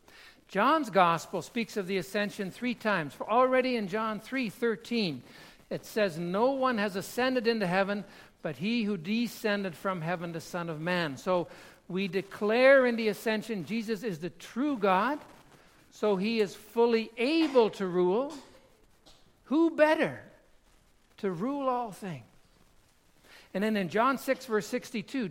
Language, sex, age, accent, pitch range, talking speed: English, male, 60-79, American, 195-265 Hz, 145 wpm